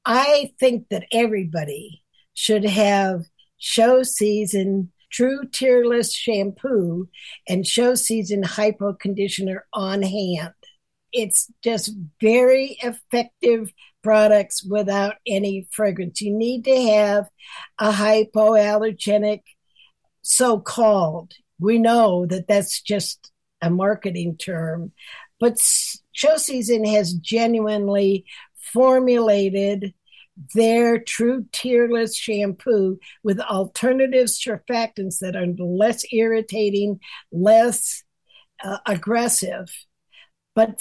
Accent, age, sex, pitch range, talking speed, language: American, 60-79, female, 195-235 Hz, 90 wpm, English